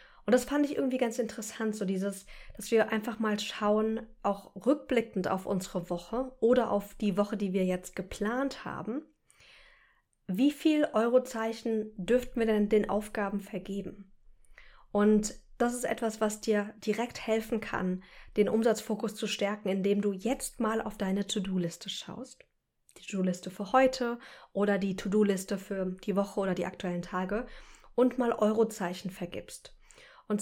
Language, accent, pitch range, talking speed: German, German, 195-230 Hz, 150 wpm